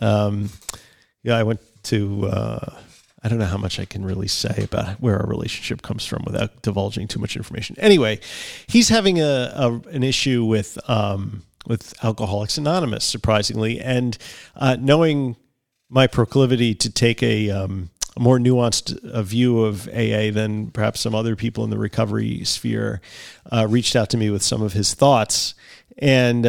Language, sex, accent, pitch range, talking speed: English, male, American, 110-135 Hz, 170 wpm